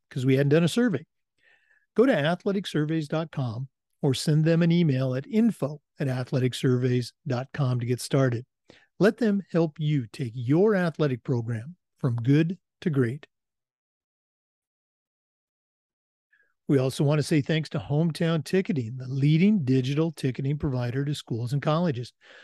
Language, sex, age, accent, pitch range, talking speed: English, male, 50-69, American, 135-175 Hz, 135 wpm